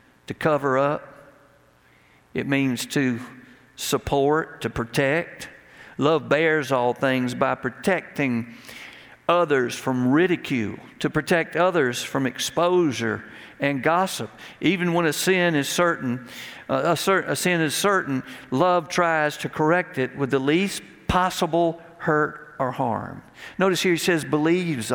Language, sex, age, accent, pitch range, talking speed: English, male, 50-69, American, 130-175 Hz, 130 wpm